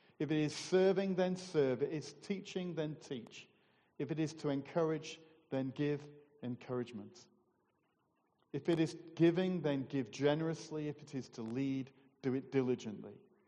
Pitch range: 125-160 Hz